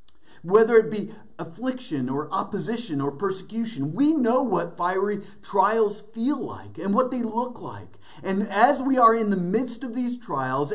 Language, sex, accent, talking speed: English, male, American, 165 wpm